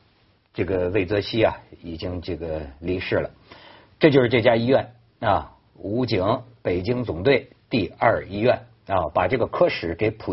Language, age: Chinese, 50-69